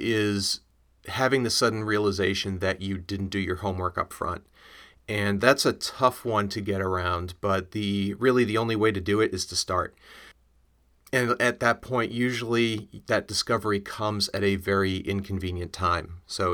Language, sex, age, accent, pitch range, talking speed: English, male, 30-49, American, 95-110 Hz, 170 wpm